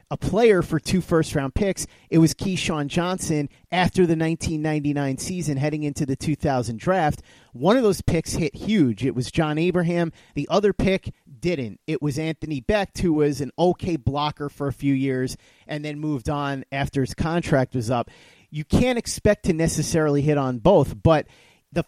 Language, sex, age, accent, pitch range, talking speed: English, male, 30-49, American, 140-180 Hz, 180 wpm